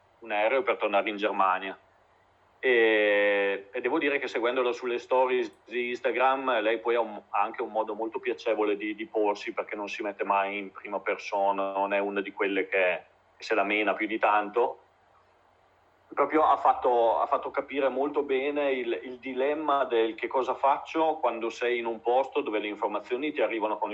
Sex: male